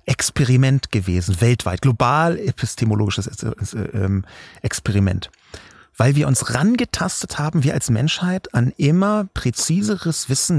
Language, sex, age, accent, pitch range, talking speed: German, male, 30-49, German, 115-160 Hz, 100 wpm